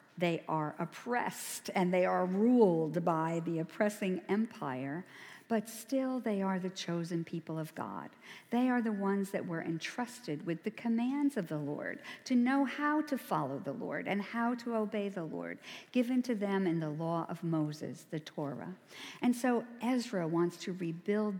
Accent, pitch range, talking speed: American, 160-215 Hz, 175 wpm